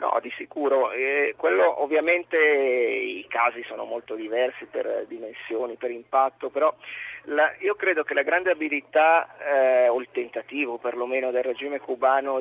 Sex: male